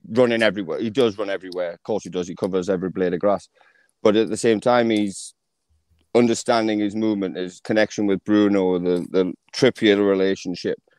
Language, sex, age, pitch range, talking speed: English, male, 30-49, 95-115 Hz, 180 wpm